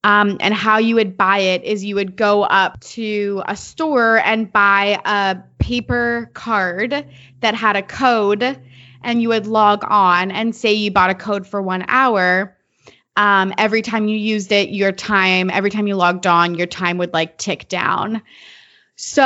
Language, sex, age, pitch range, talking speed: English, female, 20-39, 195-255 Hz, 180 wpm